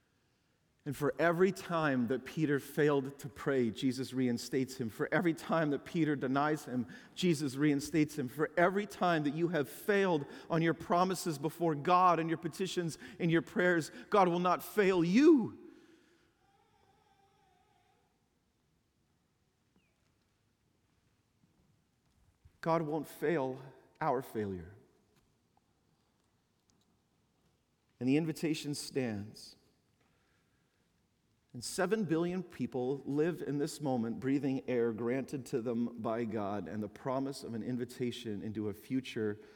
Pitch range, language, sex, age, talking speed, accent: 120-170 Hz, English, male, 40-59, 120 wpm, American